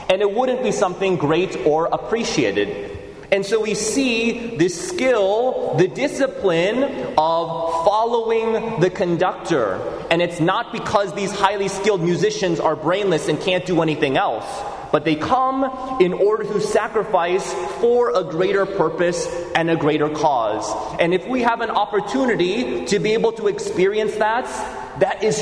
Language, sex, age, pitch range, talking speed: English, male, 30-49, 175-230 Hz, 150 wpm